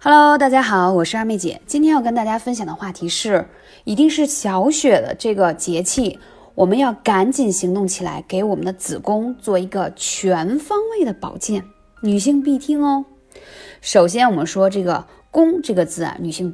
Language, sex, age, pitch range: Chinese, female, 20-39, 185-280 Hz